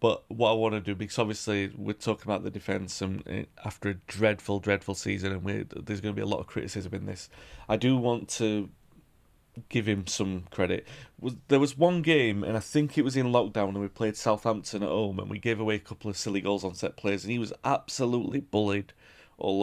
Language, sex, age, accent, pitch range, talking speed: English, male, 30-49, British, 100-110 Hz, 225 wpm